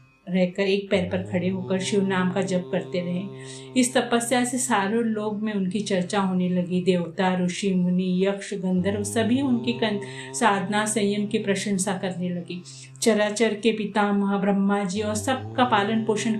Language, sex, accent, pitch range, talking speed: Hindi, female, native, 180-215 Hz, 90 wpm